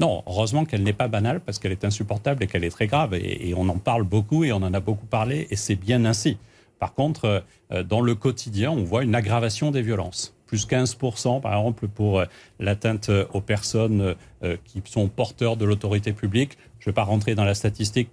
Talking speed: 210 wpm